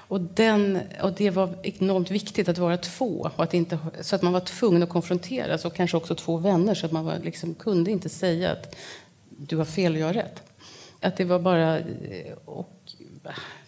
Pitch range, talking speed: 165-200 Hz, 200 wpm